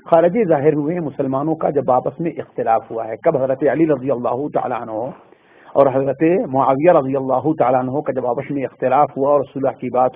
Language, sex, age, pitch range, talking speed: Urdu, male, 50-69, 140-180 Hz, 195 wpm